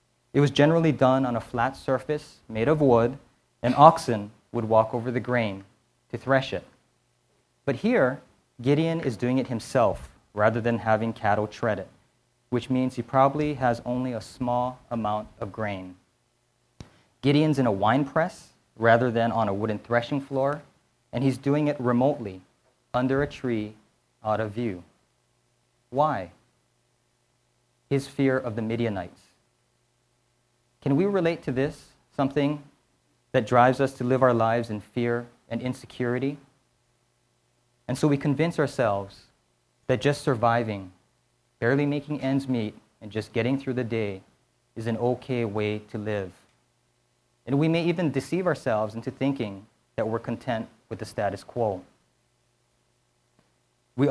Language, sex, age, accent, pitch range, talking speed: English, male, 30-49, American, 110-135 Hz, 145 wpm